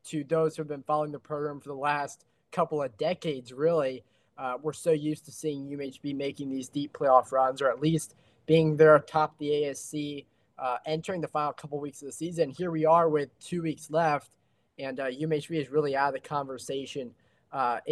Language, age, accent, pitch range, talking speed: English, 20-39, American, 145-165 Hz, 205 wpm